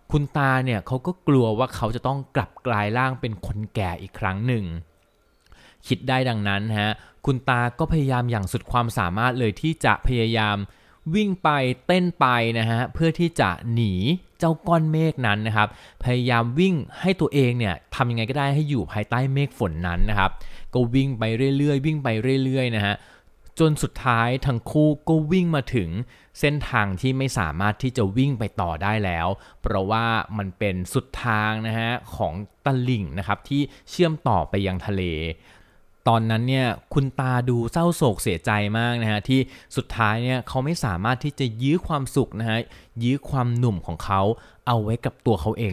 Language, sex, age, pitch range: Thai, male, 20-39, 105-135 Hz